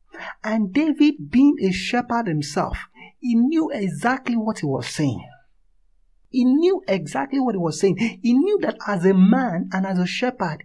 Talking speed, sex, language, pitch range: 170 wpm, male, English, 165-235 Hz